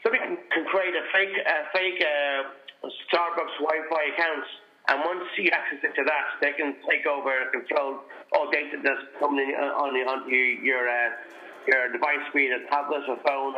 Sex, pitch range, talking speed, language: male, 140-175 Hz, 190 wpm, English